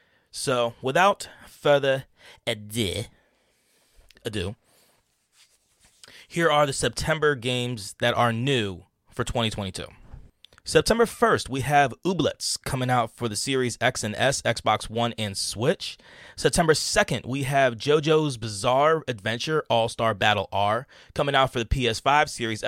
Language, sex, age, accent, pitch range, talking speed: English, male, 30-49, American, 110-150 Hz, 125 wpm